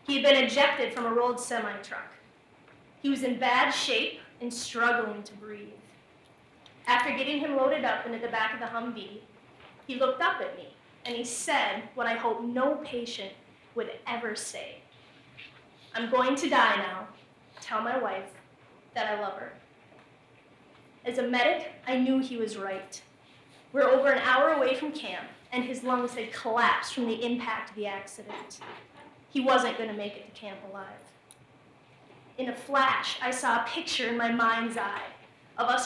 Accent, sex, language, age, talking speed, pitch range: American, female, English, 20-39, 175 wpm, 225-265 Hz